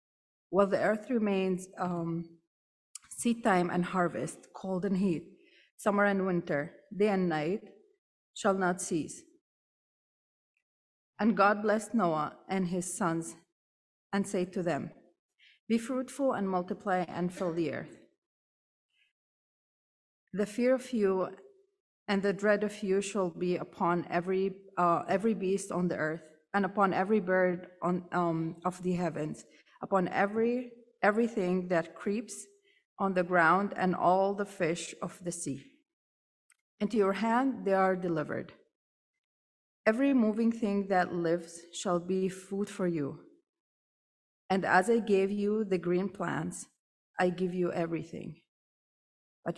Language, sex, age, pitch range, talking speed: English, female, 30-49, 175-205 Hz, 135 wpm